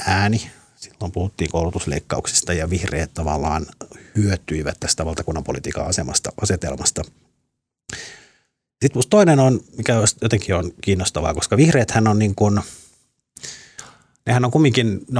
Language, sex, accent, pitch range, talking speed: Finnish, male, native, 85-110 Hz, 105 wpm